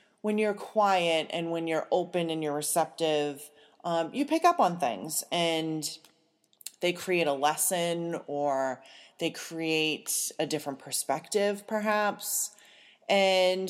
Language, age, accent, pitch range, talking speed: English, 30-49, American, 155-200 Hz, 125 wpm